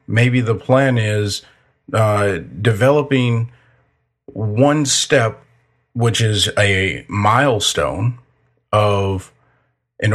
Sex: male